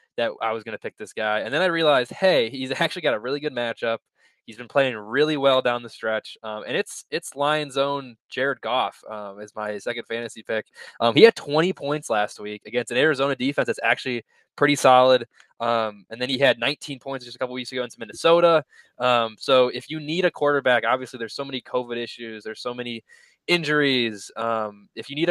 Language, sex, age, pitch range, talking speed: English, male, 20-39, 115-140 Hz, 220 wpm